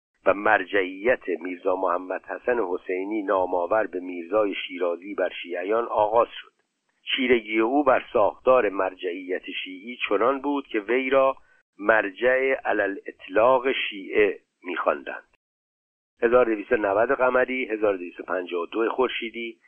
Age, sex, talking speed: 60-79, male, 105 wpm